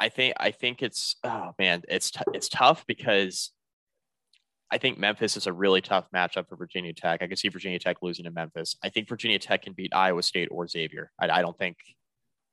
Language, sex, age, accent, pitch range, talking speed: English, male, 20-39, American, 85-95 Hz, 215 wpm